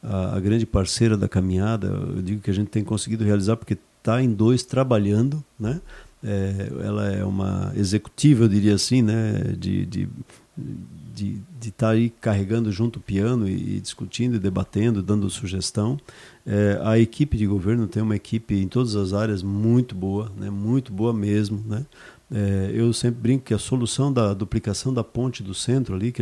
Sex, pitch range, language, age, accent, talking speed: male, 105-130 Hz, Portuguese, 50-69, Brazilian, 175 wpm